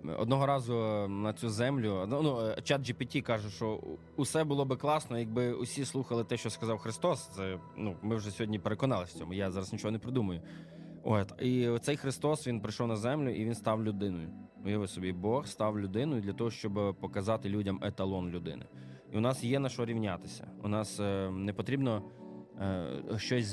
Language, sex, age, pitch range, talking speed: Ukrainian, male, 20-39, 95-120 Hz, 180 wpm